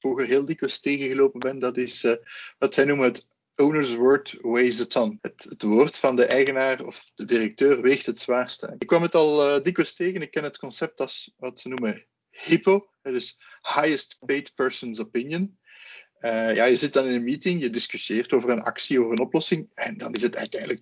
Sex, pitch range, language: male, 130-185 Hz, Dutch